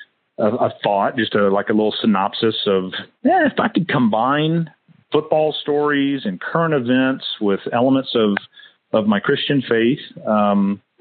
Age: 40-59